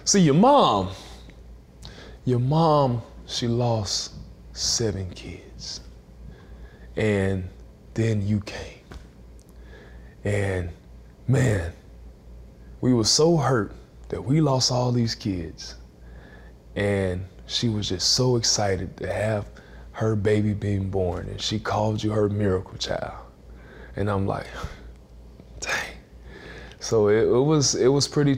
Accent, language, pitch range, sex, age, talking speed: American, English, 90-110 Hz, male, 20-39, 115 wpm